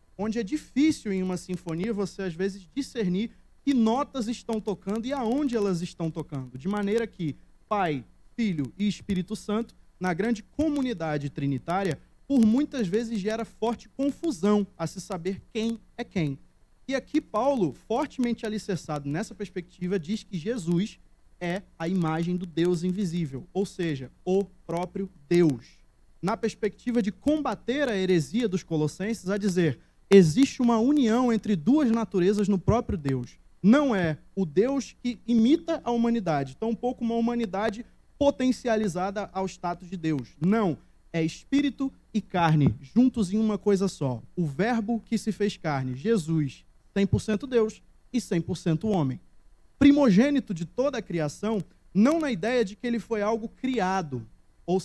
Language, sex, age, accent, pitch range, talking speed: Portuguese, male, 20-39, Brazilian, 175-230 Hz, 150 wpm